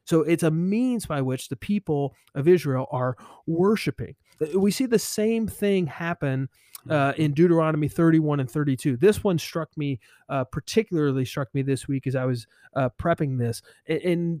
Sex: male